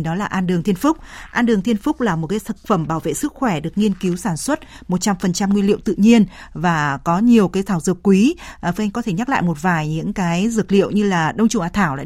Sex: female